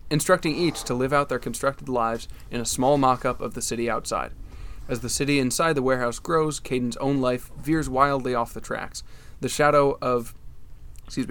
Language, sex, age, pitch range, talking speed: English, male, 20-39, 120-140 Hz, 185 wpm